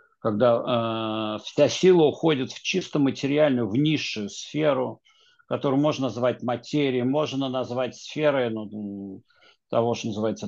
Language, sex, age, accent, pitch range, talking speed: Russian, male, 50-69, native, 110-150 Hz, 125 wpm